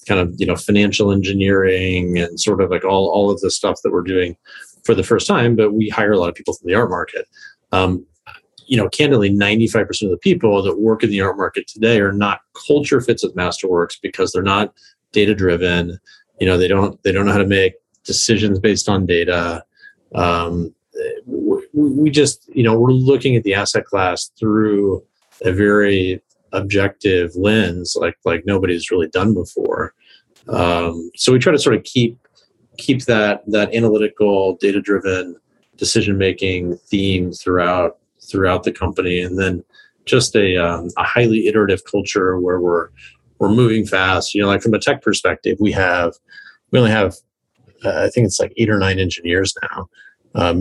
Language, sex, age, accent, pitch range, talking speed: English, male, 40-59, American, 90-115 Hz, 185 wpm